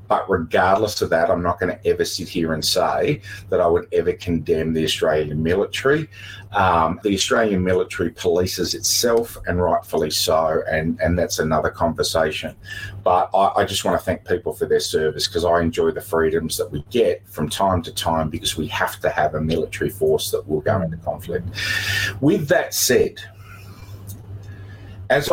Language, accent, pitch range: English, Australian, 90-110 Hz